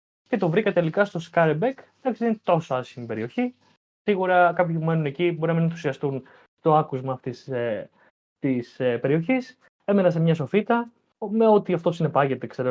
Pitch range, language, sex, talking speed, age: 135-195 Hz, Greek, male, 170 wpm, 20-39